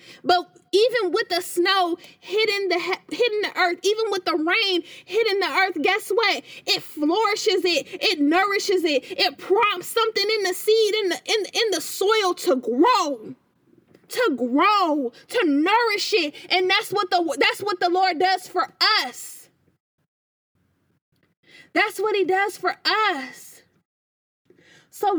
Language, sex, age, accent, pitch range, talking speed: English, female, 20-39, American, 335-405 Hz, 150 wpm